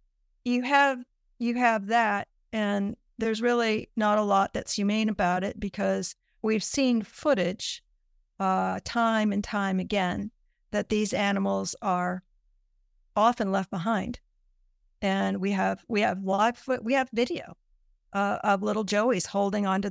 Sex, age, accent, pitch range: female, 50-69, American, 175-220 Hz